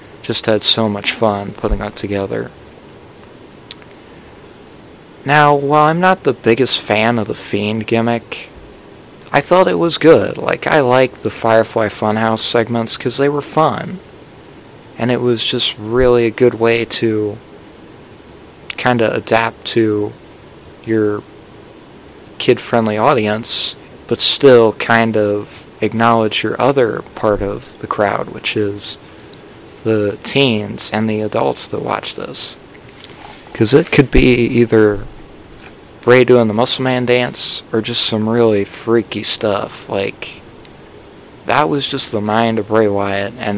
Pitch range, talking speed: 105-120 Hz, 135 wpm